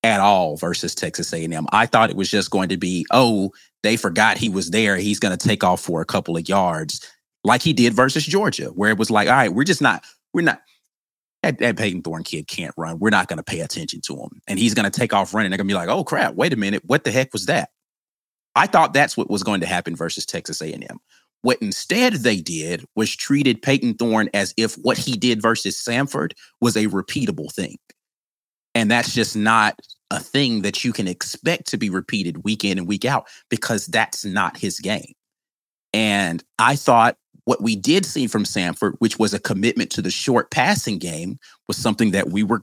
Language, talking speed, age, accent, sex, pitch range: English, 220 wpm, 30-49, American, male, 100-120 Hz